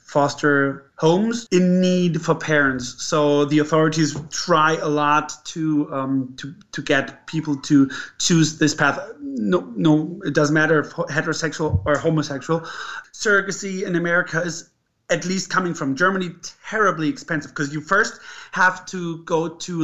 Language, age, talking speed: English, 30-49, 150 wpm